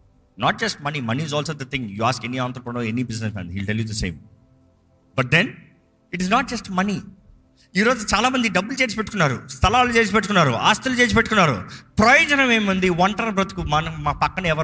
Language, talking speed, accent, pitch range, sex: Telugu, 200 wpm, native, 115-195 Hz, male